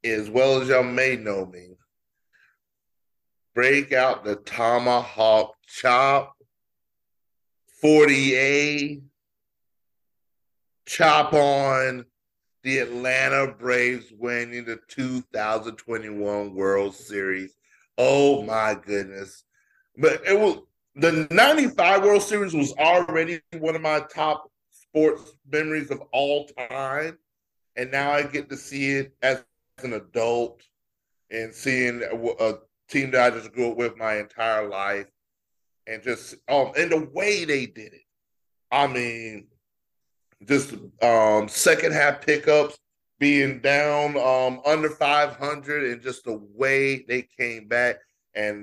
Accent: American